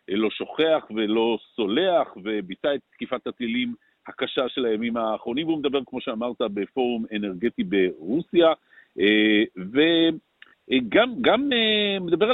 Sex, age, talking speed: male, 50-69, 100 wpm